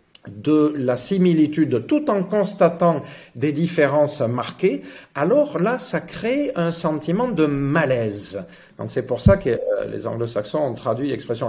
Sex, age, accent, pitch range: male, 50-69, French, 125-175 Hz